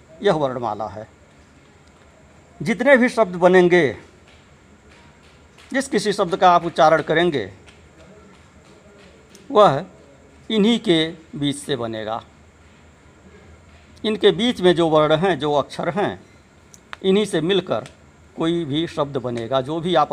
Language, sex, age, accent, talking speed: Hindi, male, 60-79, native, 115 wpm